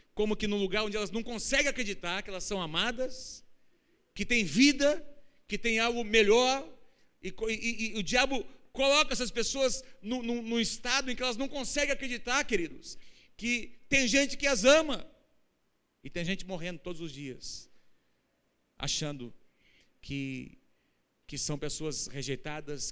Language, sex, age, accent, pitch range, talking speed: Portuguese, male, 40-59, Brazilian, 150-235 Hz, 145 wpm